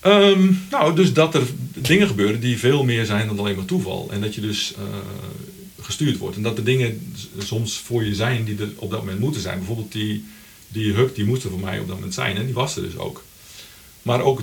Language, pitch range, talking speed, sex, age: Dutch, 100-135 Hz, 240 wpm, male, 50-69